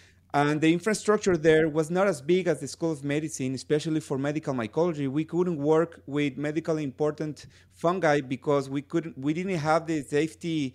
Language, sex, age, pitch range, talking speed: English, male, 30-49, 130-170 Hz, 180 wpm